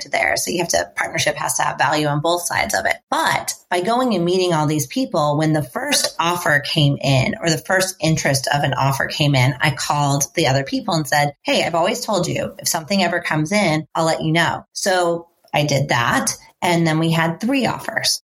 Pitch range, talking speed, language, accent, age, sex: 155-190 Hz, 225 wpm, English, American, 30-49, female